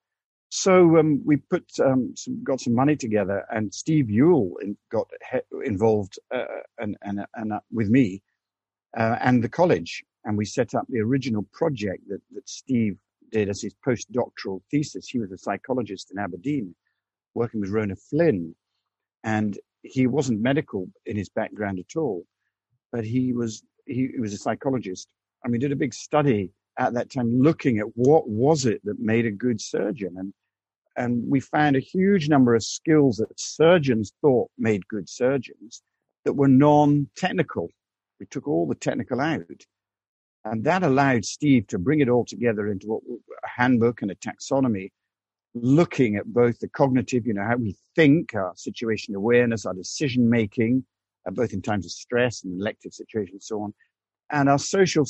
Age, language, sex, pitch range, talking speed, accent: 50-69, English, male, 105-135 Hz, 170 wpm, British